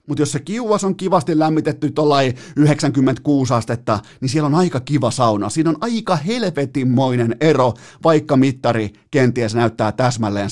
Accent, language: native, Finnish